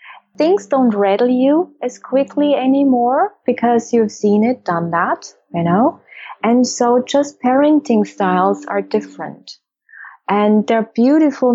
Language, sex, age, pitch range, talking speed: English, female, 20-39, 220-270 Hz, 130 wpm